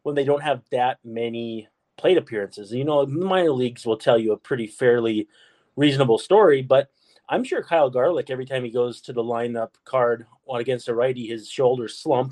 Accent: American